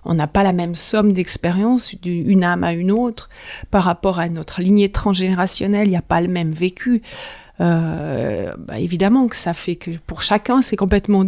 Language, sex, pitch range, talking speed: French, female, 180-215 Hz, 190 wpm